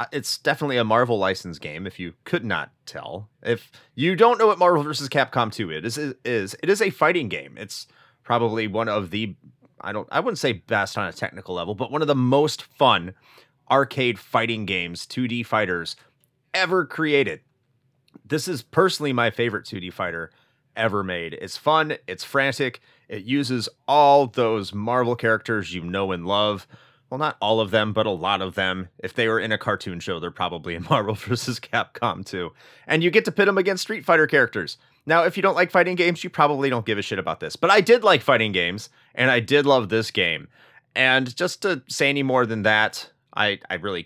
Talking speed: 205 wpm